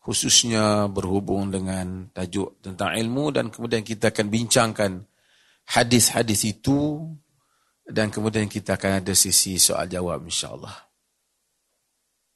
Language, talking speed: Malay, 105 wpm